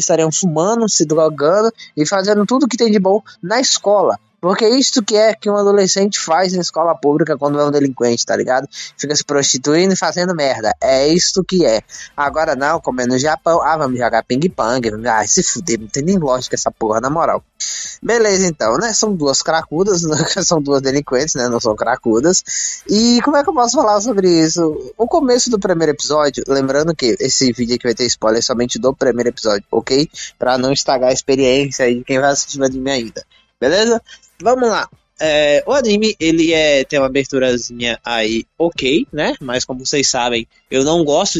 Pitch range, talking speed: 130-185 Hz, 200 wpm